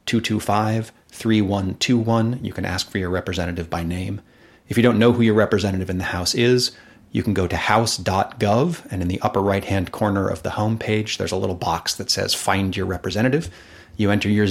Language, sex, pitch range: English, male, 95-110 Hz